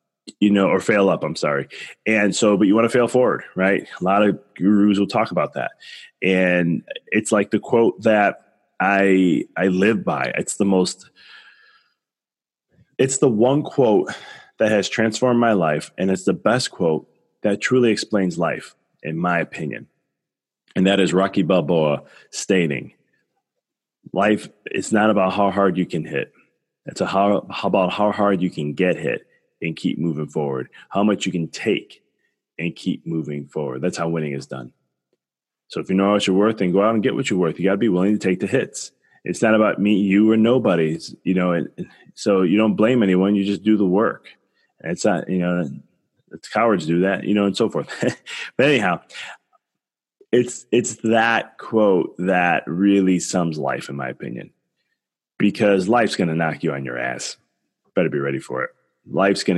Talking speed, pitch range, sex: 190 wpm, 85-105 Hz, male